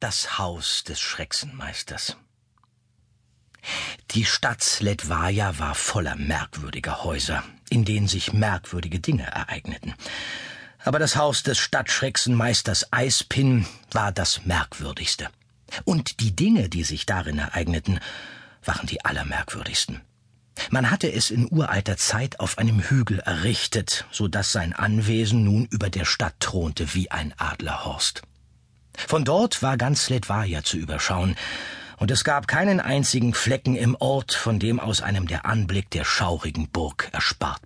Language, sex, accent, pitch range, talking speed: German, male, German, 85-120 Hz, 130 wpm